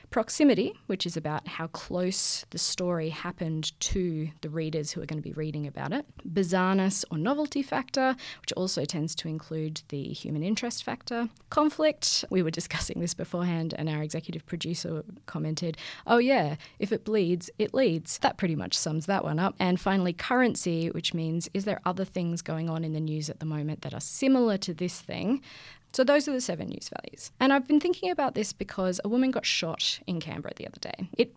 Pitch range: 160-230 Hz